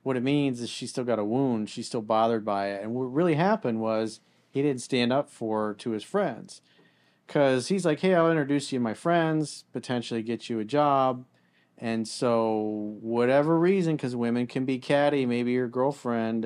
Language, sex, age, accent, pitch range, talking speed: English, male, 40-59, American, 115-140 Hz, 200 wpm